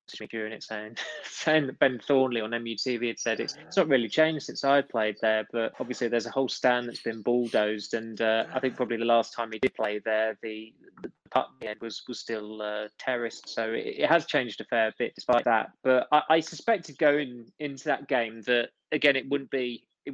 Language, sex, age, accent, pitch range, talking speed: English, male, 20-39, British, 110-125 Hz, 220 wpm